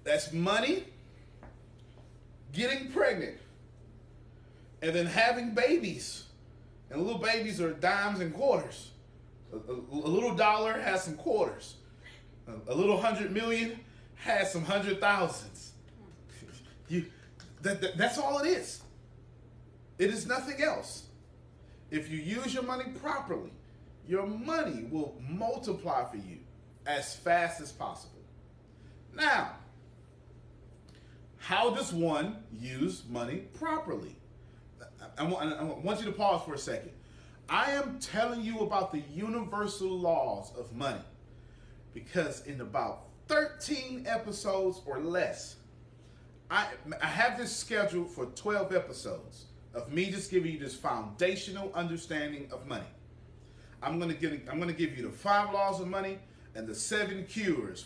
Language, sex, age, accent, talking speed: English, male, 30-49, American, 125 wpm